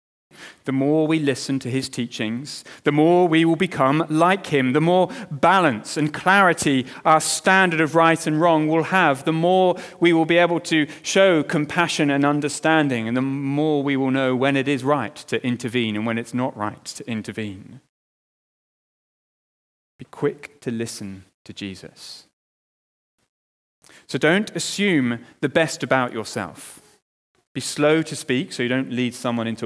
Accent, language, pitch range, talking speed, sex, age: British, English, 110-165 Hz, 160 wpm, male, 30-49